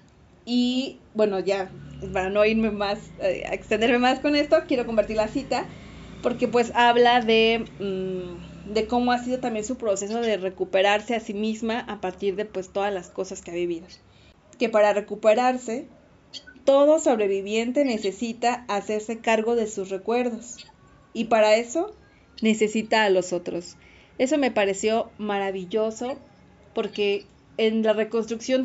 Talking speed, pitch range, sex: 145 wpm, 200-245 Hz, female